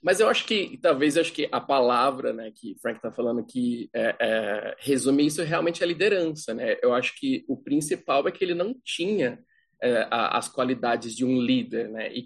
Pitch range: 130-170 Hz